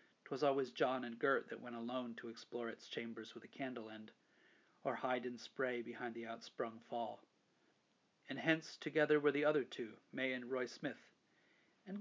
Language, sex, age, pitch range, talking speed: English, male, 40-59, 120-155 Hz, 175 wpm